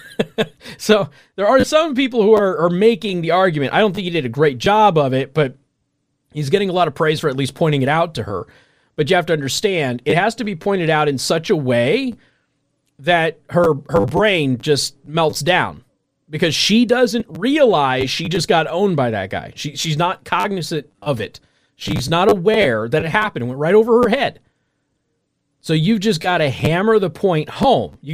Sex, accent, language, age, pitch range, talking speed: male, American, English, 30-49, 140-190 Hz, 205 wpm